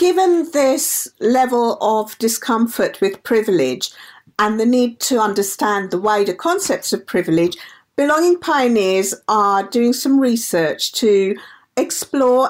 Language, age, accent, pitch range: English, 50-69, British, 195-250 Hz